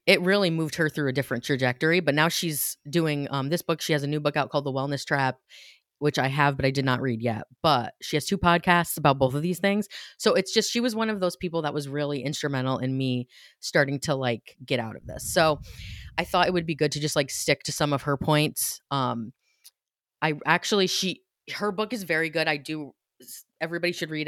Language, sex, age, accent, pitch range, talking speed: English, female, 30-49, American, 135-175 Hz, 235 wpm